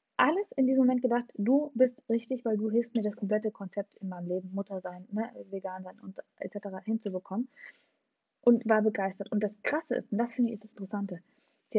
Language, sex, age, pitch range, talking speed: German, female, 20-39, 195-235 Hz, 210 wpm